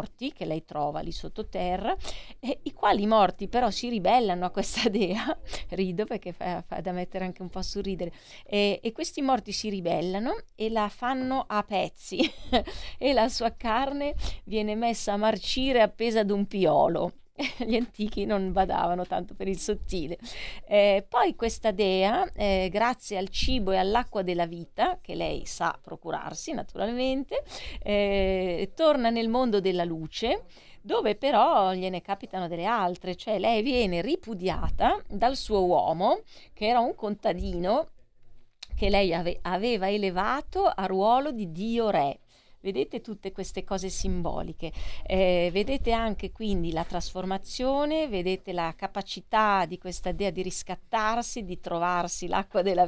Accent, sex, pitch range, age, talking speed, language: native, female, 180-230 Hz, 30-49, 145 wpm, Italian